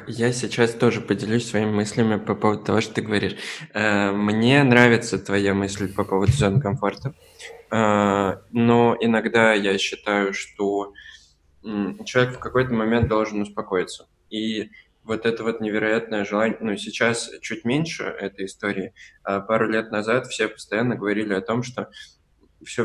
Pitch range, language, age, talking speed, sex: 100-115 Hz, Russian, 20-39, 140 wpm, male